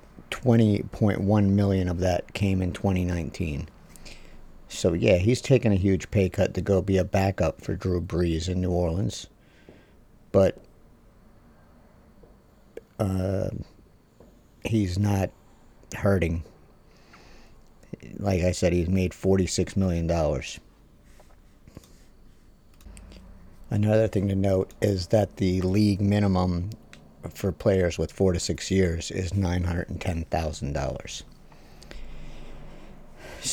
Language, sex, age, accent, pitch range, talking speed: English, male, 50-69, American, 90-105 Hz, 100 wpm